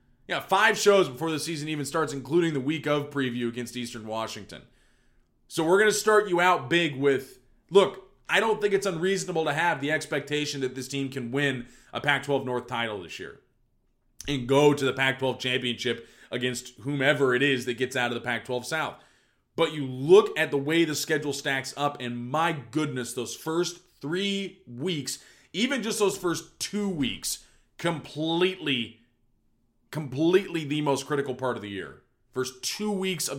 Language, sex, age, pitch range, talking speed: English, male, 20-39, 120-155 Hz, 180 wpm